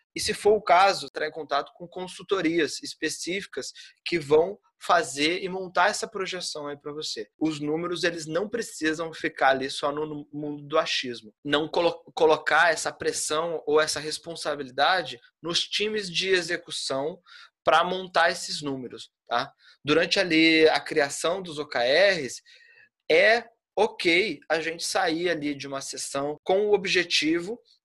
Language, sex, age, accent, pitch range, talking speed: Portuguese, male, 20-39, Brazilian, 150-195 Hz, 145 wpm